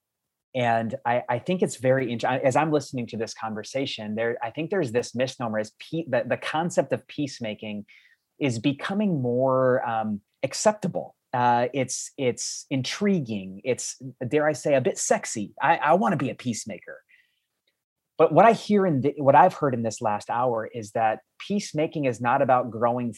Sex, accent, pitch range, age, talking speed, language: male, American, 110-140 Hz, 30-49, 175 wpm, English